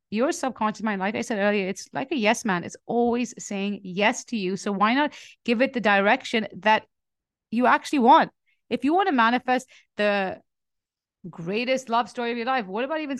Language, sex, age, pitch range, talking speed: English, female, 30-49, 185-245 Hz, 200 wpm